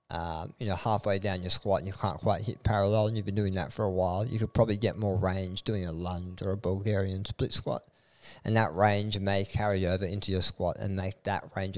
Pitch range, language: 95-110 Hz, English